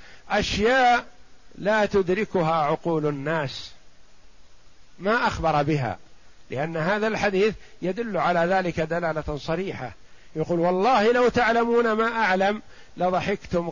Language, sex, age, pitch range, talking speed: Arabic, male, 50-69, 165-210 Hz, 100 wpm